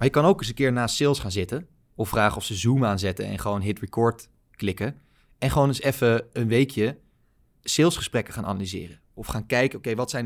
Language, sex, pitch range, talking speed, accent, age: Dutch, male, 110-130 Hz, 215 wpm, Dutch, 20-39